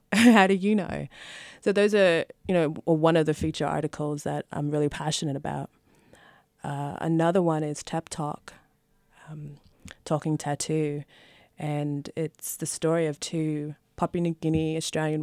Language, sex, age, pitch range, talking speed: English, female, 20-39, 150-165 Hz, 150 wpm